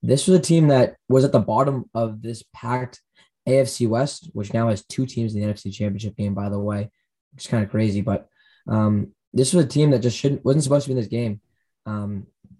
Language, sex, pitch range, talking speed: English, male, 110-135 Hz, 230 wpm